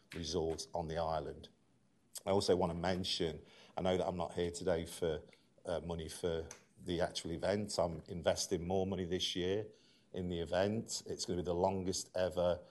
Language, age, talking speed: English, 40-59, 185 wpm